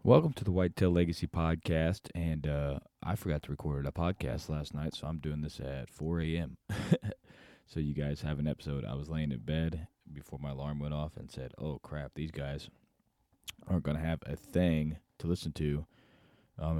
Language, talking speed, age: English, 195 wpm, 20-39